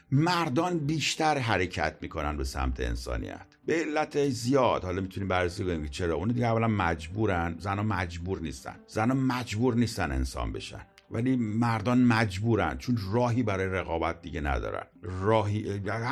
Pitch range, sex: 85-125 Hz, male